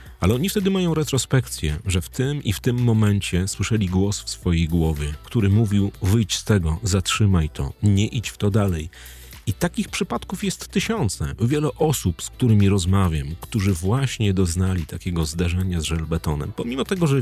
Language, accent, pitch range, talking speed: Polish, native, 90-120 Hz, 170 wpm